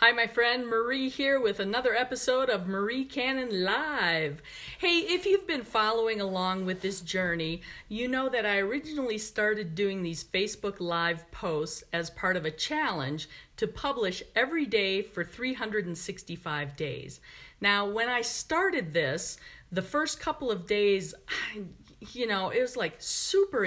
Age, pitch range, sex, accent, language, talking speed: 40-59, 180-245 Hz, female, American, English, 150 wpm